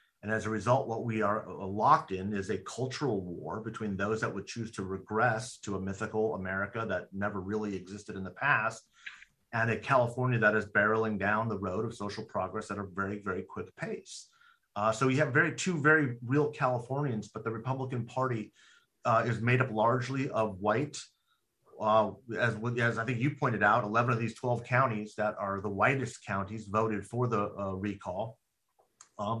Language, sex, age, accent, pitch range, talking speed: English, male, 30-49, American, 105-125 Hz, 190 wpm